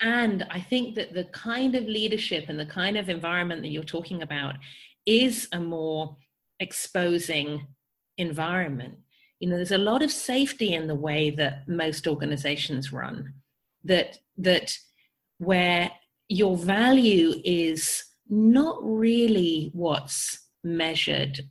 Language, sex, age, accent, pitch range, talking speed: English, female, 40-59, British, 160-225 Hz, 130 wpm